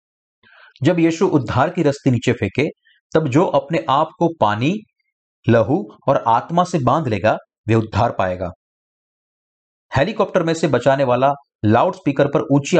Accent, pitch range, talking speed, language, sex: native, 115-170 Hz, 140 wpm, Hindi, male